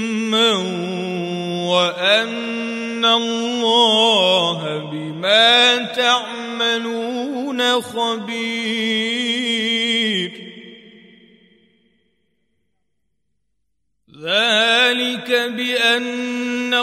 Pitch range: 215-240 Hz